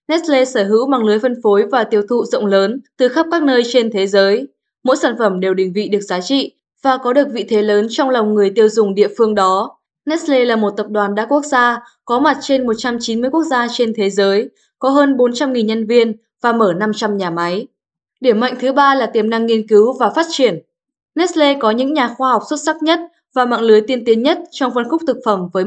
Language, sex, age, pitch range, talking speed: Vietnamese, female, 10-29, 210-265 Hz, 240 wpm